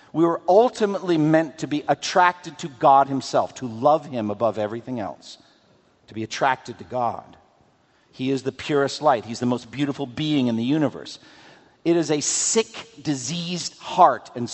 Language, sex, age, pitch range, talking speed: English, male, 50-69, 125-175 Hz, 170 wpm